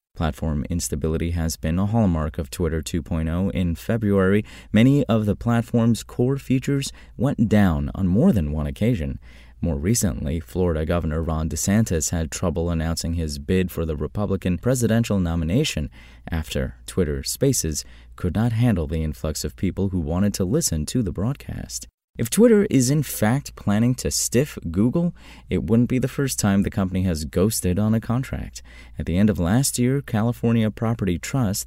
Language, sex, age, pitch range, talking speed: English, male, 30-49, 80-120 Hz, 165 wpm